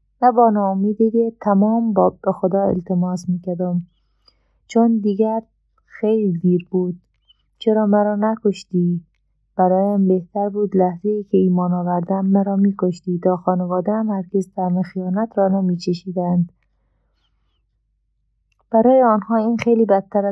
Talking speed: 110 wpm